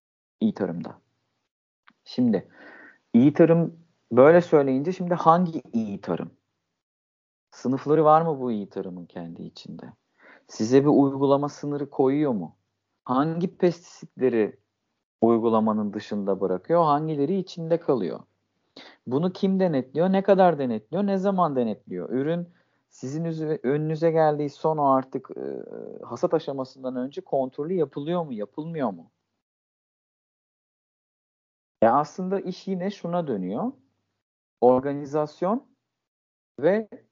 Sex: male